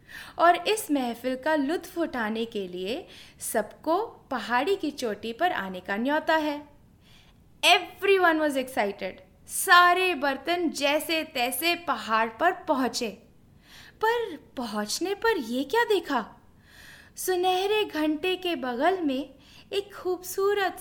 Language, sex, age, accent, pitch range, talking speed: English, female, 20-39, Indian, 245-355 Hz, 115 wpm